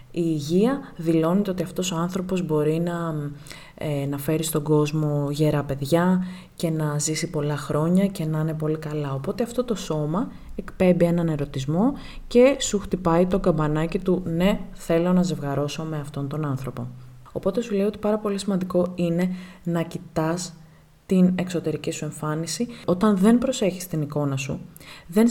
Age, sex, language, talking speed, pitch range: 20-39, female, Greek, 160 wpm, 155-200 Hz